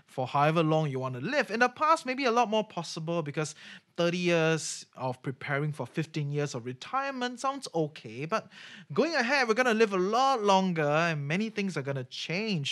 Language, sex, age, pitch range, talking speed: English, male, 20-39, 150-225 Hz, 210 wpm